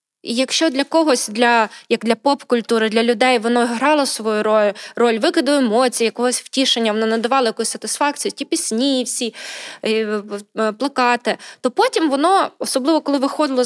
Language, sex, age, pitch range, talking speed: Ukrainian, female, 20-39, 225-270 Hz, 140 wpm